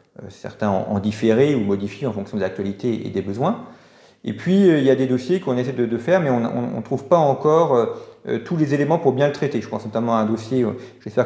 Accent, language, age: French, French, 40-59